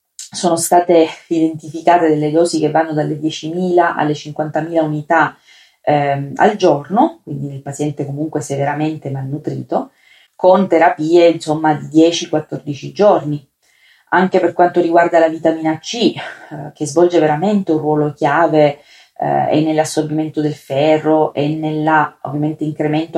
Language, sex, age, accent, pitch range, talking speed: Italian, female, 30-49, native, 150-175 Hz, 120 wpm